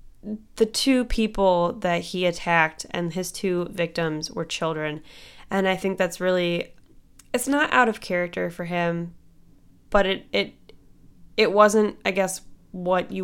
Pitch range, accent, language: 175-220 Hz, American, English